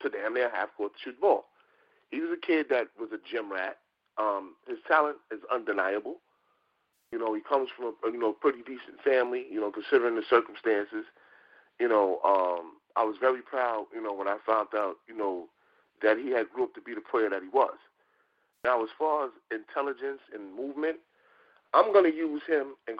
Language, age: English, 30-49